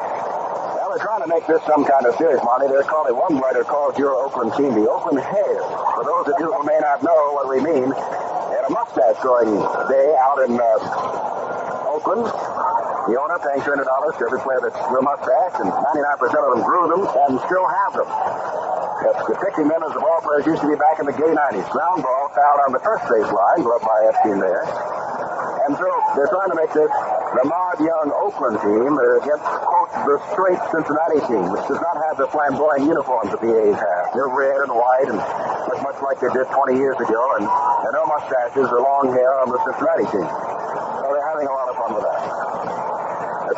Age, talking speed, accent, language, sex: 50-69, 210 wpm, American, English, male